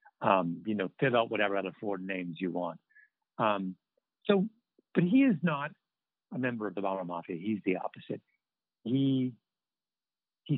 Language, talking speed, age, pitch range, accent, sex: English, 160 wpm, 50-69, 100-135 Hz, American, male